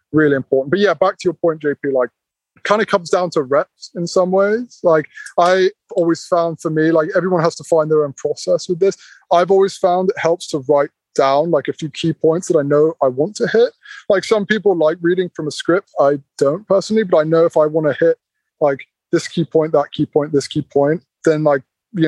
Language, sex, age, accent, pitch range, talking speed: English, male, 20-39, British, 150-190 Hz, 235 wpm